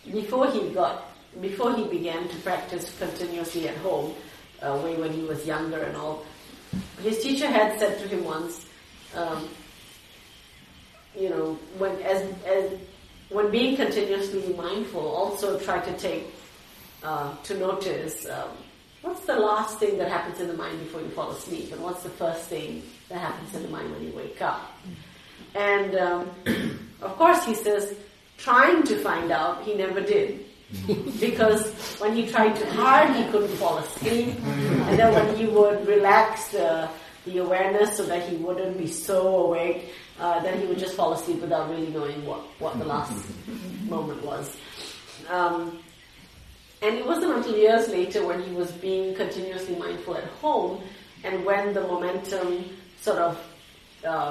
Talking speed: 165 wpm